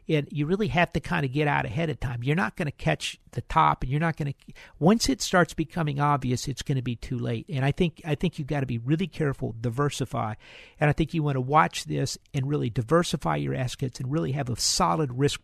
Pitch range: 130-165 Hz